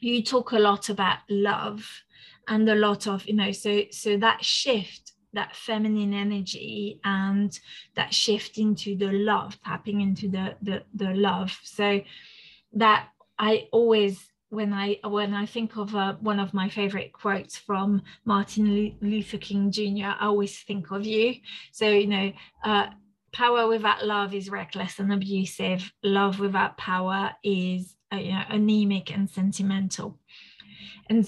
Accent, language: British, English